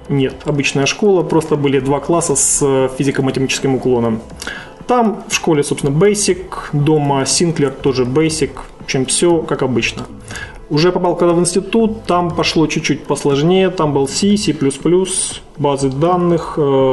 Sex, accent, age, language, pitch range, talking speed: male, native, 20-39, Ukrainian, 135-165 Hz, 140 wpm